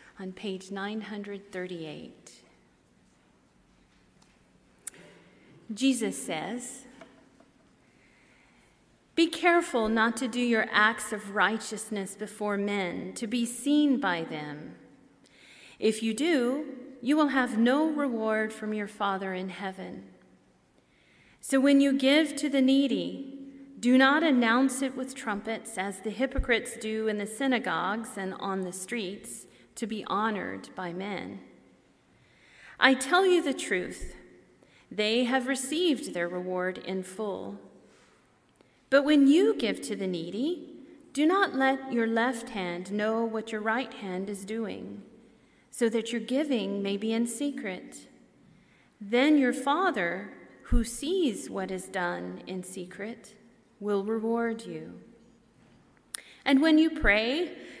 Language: English